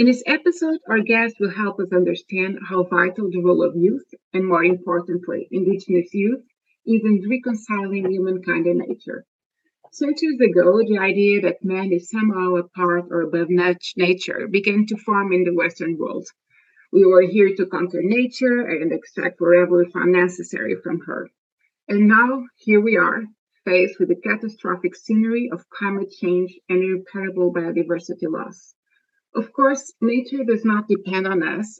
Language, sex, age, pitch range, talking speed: English, female, 30-49, 180-230 Hz, 160 wpm